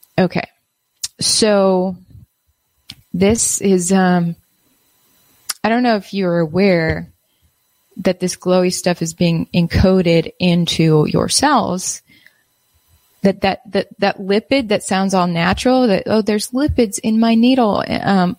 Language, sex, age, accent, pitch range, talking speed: English, female, 20-39, American, 180-225 Hz, 125 wpm